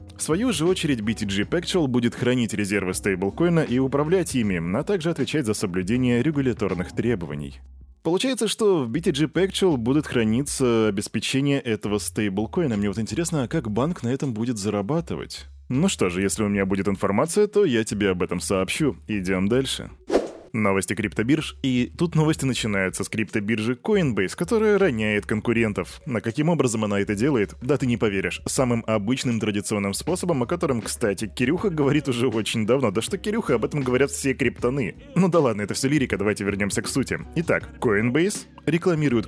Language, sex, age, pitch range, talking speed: Russian, male, 20-39, 105-150 Hz, 170 wpm